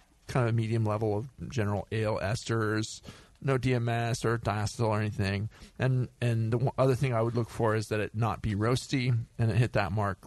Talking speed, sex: 200 wpm, male